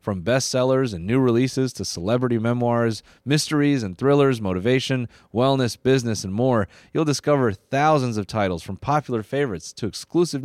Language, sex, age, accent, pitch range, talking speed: English, male, 30-49, American, 100-145 Hz, 150 wpm